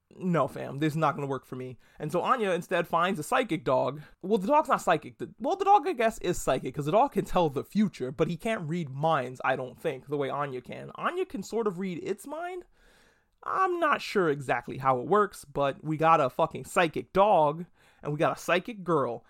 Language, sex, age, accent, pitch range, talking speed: English, male, 30-49, American, 155-205 Hz, 235 wpm